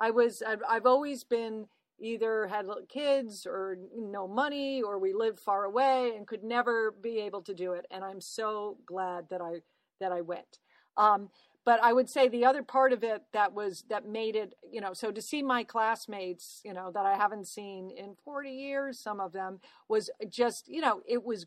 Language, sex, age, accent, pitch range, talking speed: English, female, 40-59, American, 200-245 Hz, 205 wpm